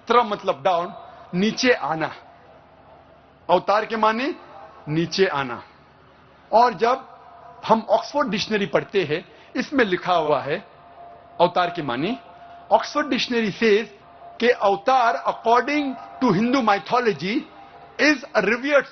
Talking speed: 105 wpm